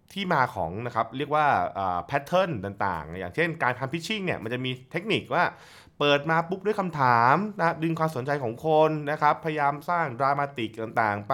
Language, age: Thai, 20-39